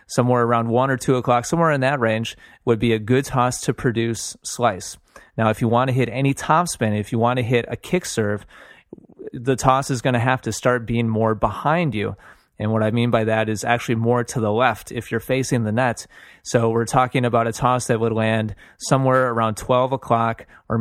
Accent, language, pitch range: American, English, 115-130 Hz